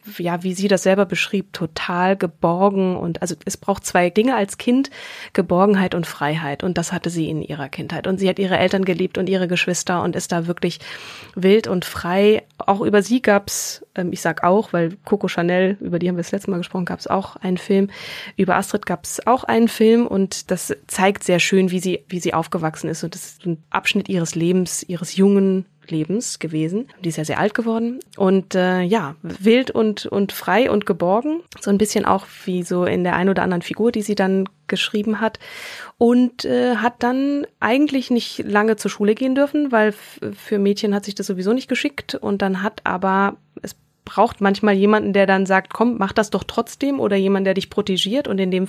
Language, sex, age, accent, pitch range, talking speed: German, female, 20-39, German, 180-215 Hz, 210 wpm